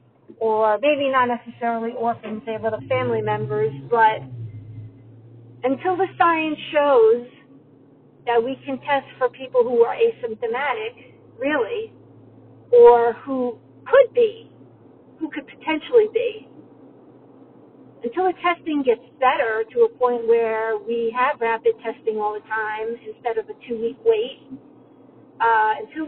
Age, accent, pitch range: 50-69, American, 230-335 Hz